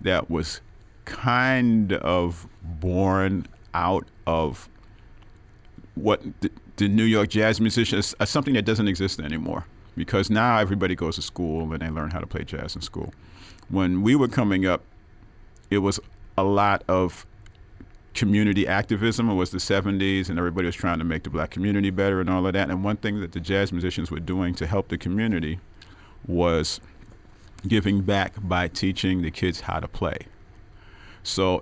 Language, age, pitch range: English, 40-59, 85-105 Hz